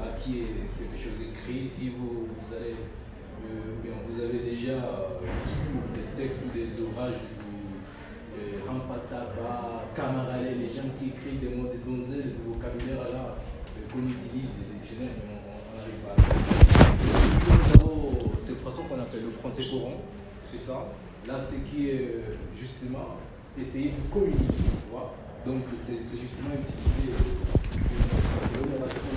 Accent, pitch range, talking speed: French, 110-130 Hz, 150 wpm